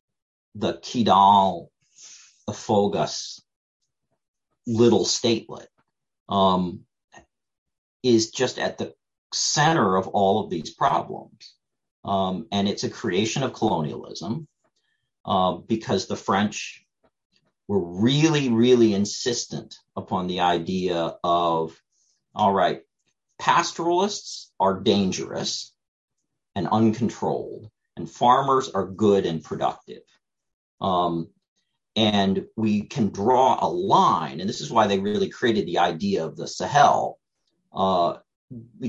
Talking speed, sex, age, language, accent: 110 wpm, male, 40-59, English, American